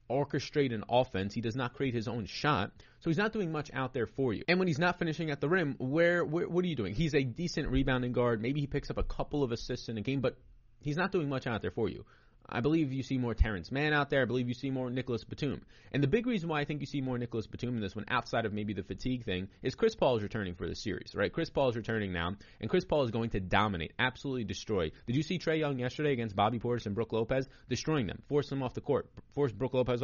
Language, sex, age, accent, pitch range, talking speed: English, male, 30-49, American, 105-140 Hz, 280 wpm